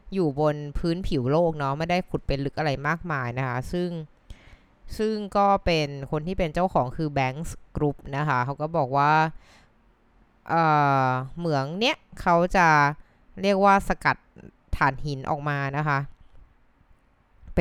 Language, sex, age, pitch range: Thai, female, 20-39, 135-175 Hz